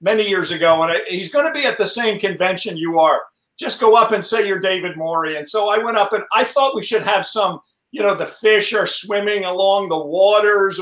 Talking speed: 240 wpm